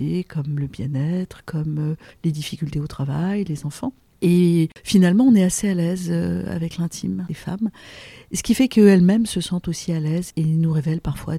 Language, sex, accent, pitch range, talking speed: French, female, French, 155-180 Hz, 180 wpm